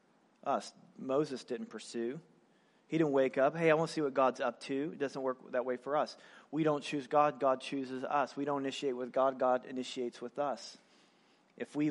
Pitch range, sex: 140-205 Hz, male